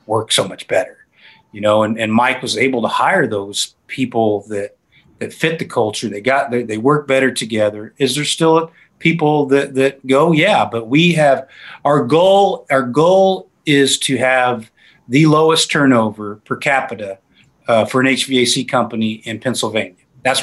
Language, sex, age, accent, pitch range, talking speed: English, male, 40-59, American, 120-150 Hz, 170 wpm